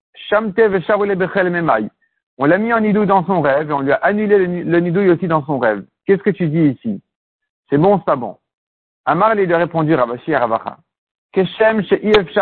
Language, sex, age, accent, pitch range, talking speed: French, male, 50-69, French, 145-200 Hz, 175 wpm